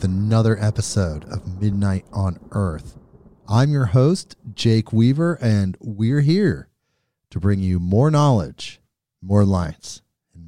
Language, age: English, 30-49